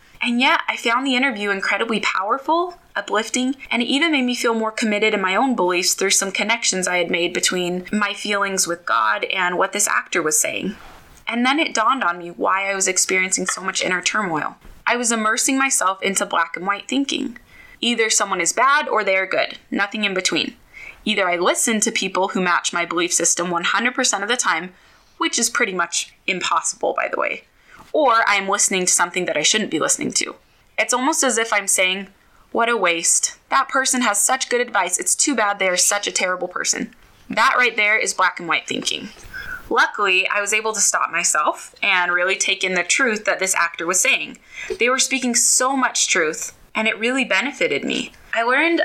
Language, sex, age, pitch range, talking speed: English, female, 20-39, 185-250 Hz, 205 wpm